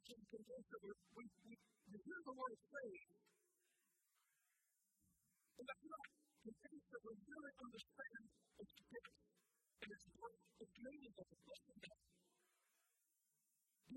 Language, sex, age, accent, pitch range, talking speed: English, female, 40-59, American, 225-290 Hz, 55 wpm